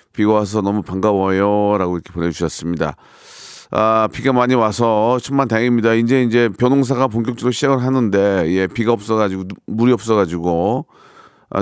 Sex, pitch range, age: male, 100-125 Hz, 40-59